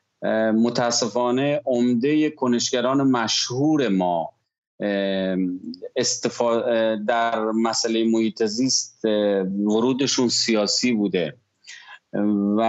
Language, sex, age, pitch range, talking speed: Persian, male, 30-49, 115-145 Hz, 55 wpm